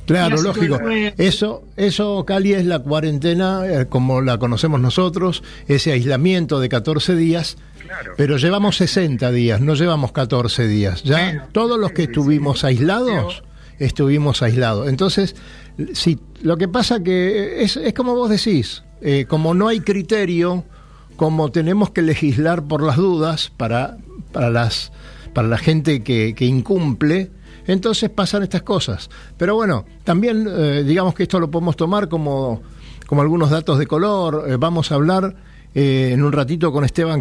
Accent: Argentinian